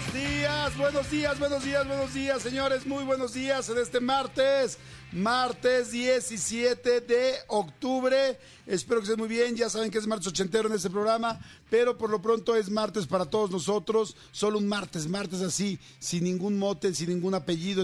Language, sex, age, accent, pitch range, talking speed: Spanish, male, 50-69, Mexican, 175-215 Hz, 180 wpm